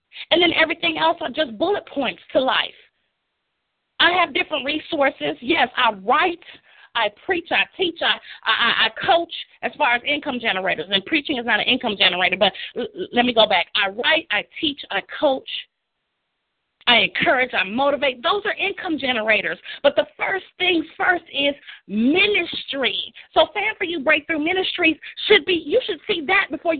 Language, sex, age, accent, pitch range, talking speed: English, female, 40-59, American, 225-330 Hz, 170 wpm